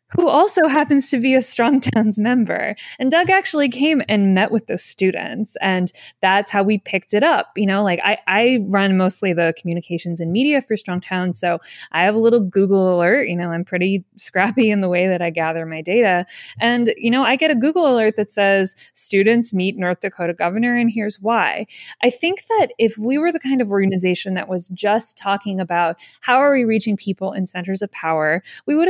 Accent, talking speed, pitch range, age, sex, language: American, 215 wpm, 185-235 Hz, 20-39, female, English